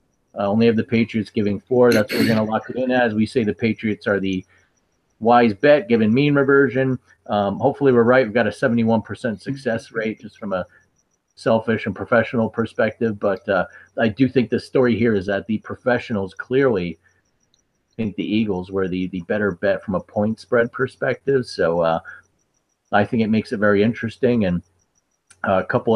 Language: English